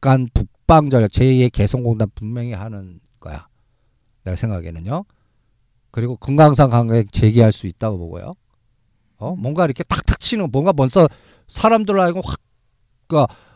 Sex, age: male, 50-69